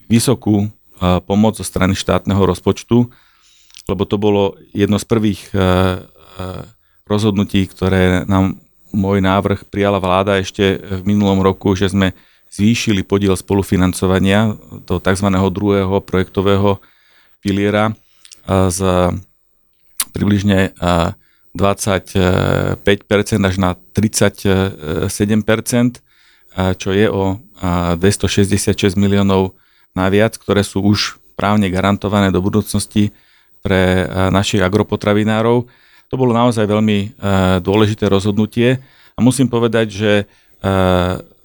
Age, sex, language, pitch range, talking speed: 40-59, male, Slovak, 95-105 Hz, 100 wpm